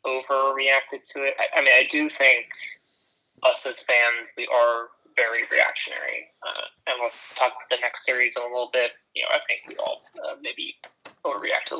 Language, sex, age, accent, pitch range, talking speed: English, male, 20-39, American, 120-145 Hz, 190 wpm